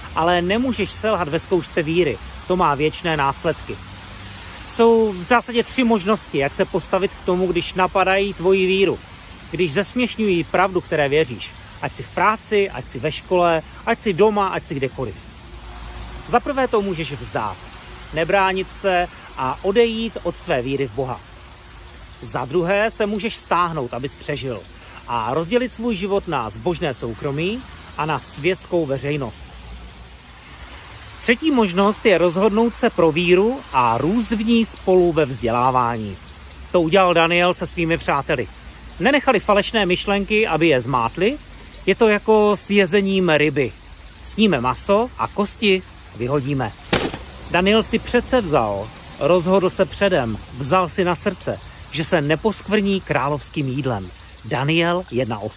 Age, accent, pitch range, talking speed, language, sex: 40-59, native, 125-200 Hz, 140 wpm, Czech, male